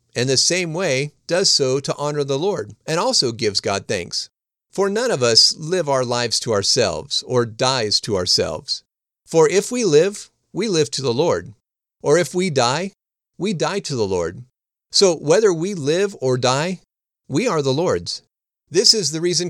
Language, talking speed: English, 185 wpm